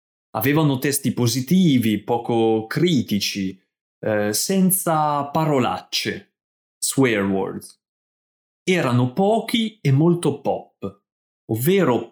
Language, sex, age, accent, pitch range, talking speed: Italian, male, 30-49, native, 105-150 Hz, 80 wpm